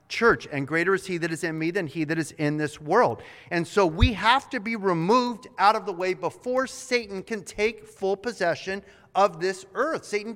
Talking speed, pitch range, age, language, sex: 215 wpm, 160-215 Hz, 30-49, English, male